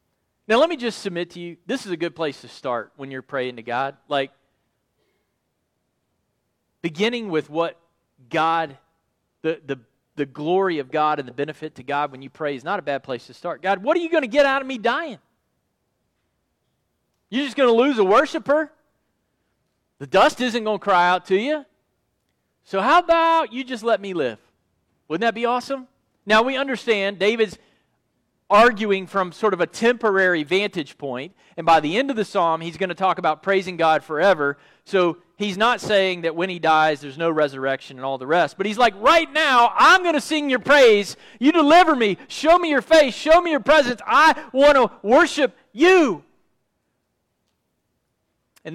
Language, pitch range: English, 155-245 Hz